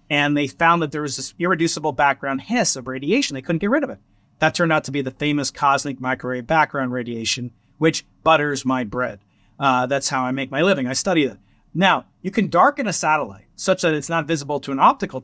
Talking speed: 225 wpm